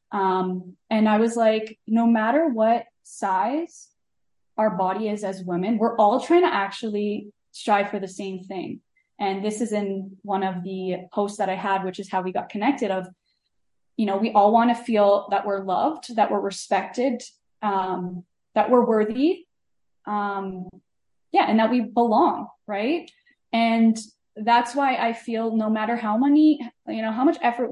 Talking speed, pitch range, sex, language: 175 wpm, 200-245 Hz, female, English